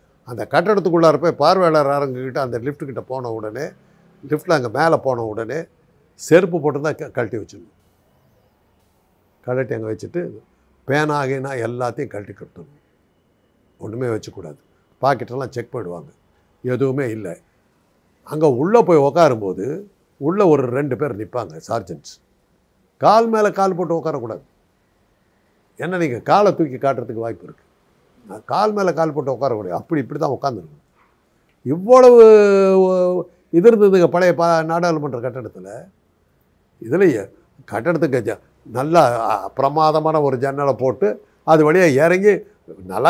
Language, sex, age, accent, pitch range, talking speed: Tamil, male, 60-79, native, 130-185 Hz, 115 wpm